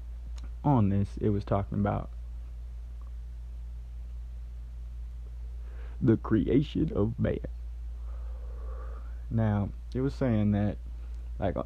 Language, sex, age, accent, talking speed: English, male, 20-39, American, 80 wpm